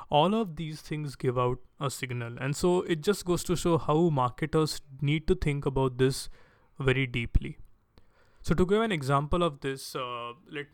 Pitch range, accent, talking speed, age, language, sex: 130-155 Hz, Indian, 185 wpm, 20-39, English, male